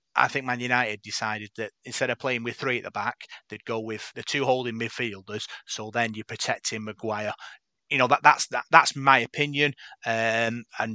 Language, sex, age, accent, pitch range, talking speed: English, male, 30-49, British, 115-130 Hz, 195 wpm